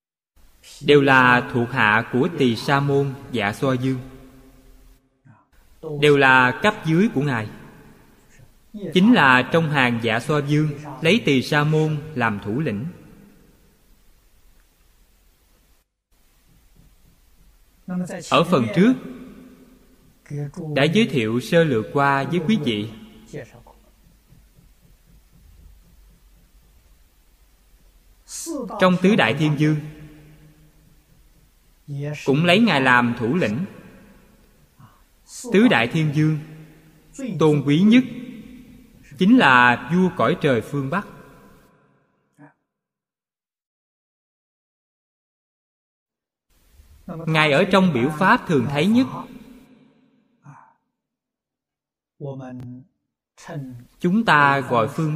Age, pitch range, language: 20-39, 120-175 Hz, Vietnamese